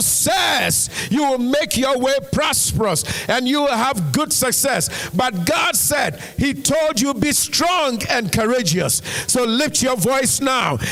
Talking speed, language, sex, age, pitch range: 155 wpm, English, male, 50-69, 190-245 Hz